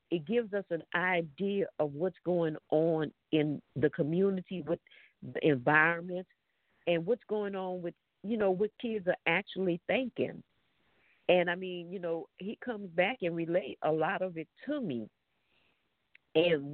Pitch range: 165-205 Hz